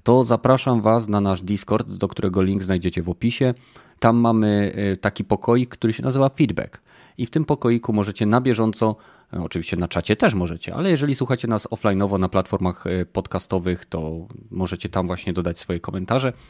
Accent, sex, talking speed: native, male, 170 wpm